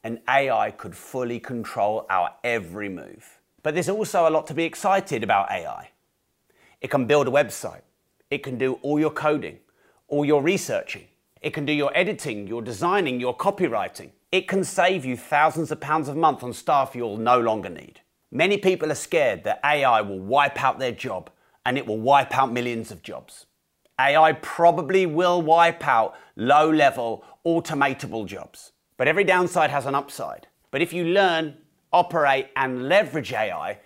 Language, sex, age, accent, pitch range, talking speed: English, male, 30-49, British, 120-160 Hz, 170 wpm